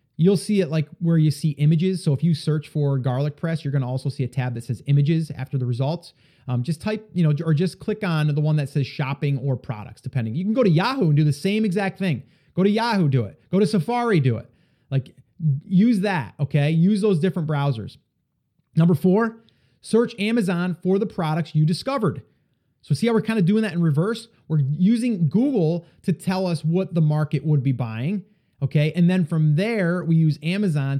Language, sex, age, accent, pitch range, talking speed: English, male, 30-49, American, 145-190 Hz, 220 wpm